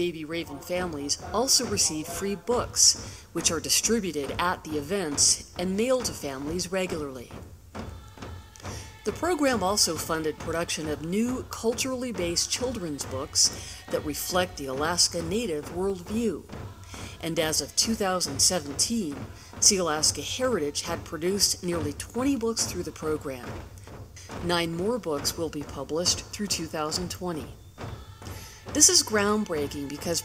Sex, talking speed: female, 120 wpm